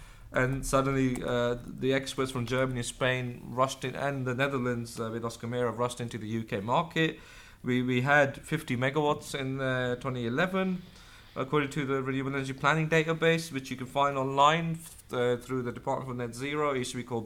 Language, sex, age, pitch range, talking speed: English, male, 30-49, 125-150 Hz, 180 wpm